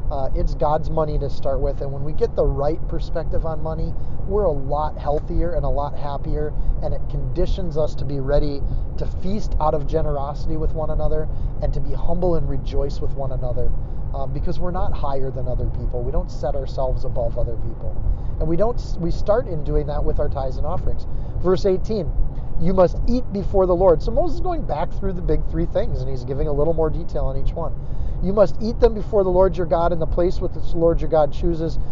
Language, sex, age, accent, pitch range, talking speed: English, male, 30-49, American, 130-175 Hz, 230 wpm